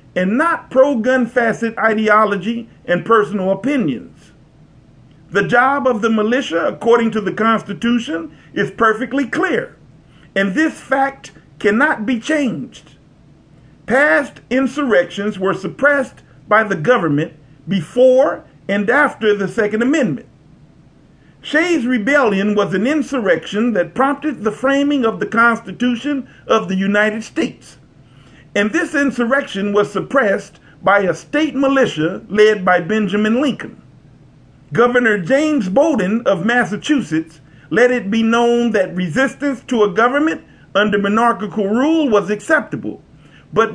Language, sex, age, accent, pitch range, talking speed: English, male, 50-69, American, 190-260 Hz, 120 wpm